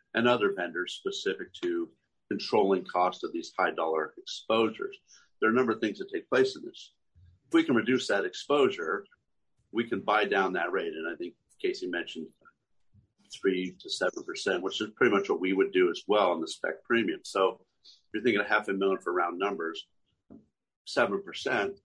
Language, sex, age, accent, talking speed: English, male, 50-69, American, 190 wpm